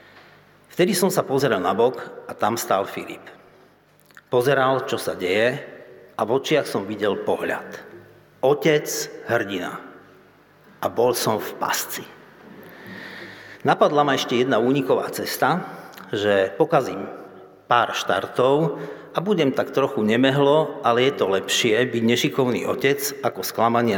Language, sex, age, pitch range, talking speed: Slovak, male, 50-69, 120-155 Hz, 130 wpm